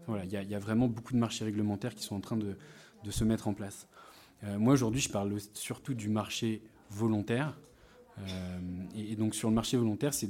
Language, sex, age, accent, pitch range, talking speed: French, male, 20-39, French, 105-120 Hz, 225 wpm